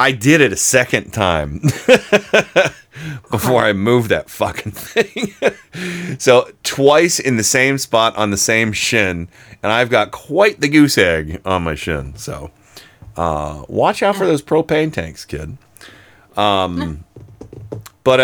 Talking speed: 140 wpm